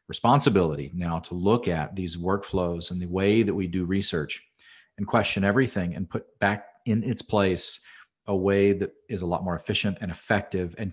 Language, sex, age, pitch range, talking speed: English, male, 40-59, 85-100 Hz, 185 wpm